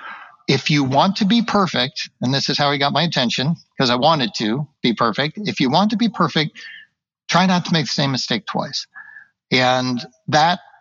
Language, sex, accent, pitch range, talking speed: English, male, American, 125-180 Hz, 200 wpm